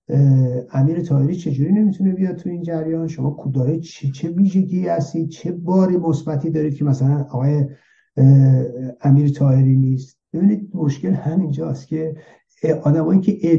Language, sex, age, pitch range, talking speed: Persian, male, 60-79, 130-165 Hz, 130 wpm